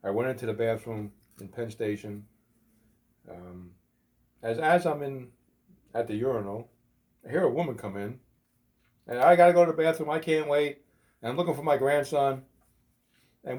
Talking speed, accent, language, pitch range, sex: 170 wpm, American, English, 110-150 Hz, male